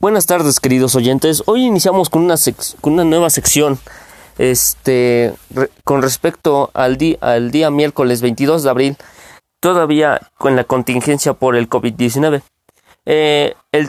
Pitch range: 125-160 Hz